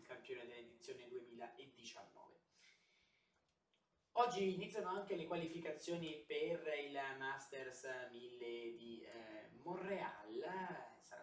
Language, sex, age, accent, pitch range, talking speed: Italian, male, 20-39, native, 140-190 Hz, 85 wpm